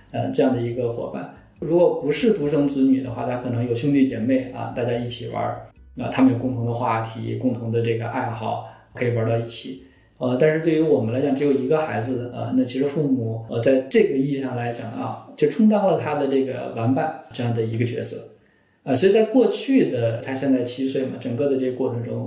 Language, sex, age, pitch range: Chinese, male, 20-39, 120-145 Hz